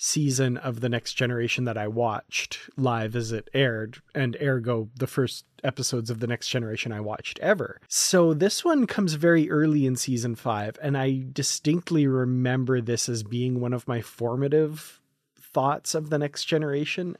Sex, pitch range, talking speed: male, 120-145 Hz, 170 wpm